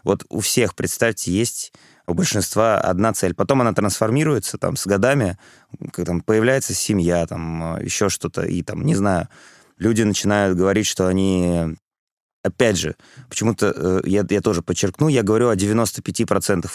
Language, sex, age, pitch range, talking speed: Russian, male, 20-39, 90-110 Hz, 145 wpm